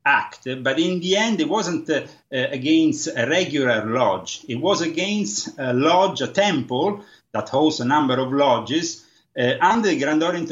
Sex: male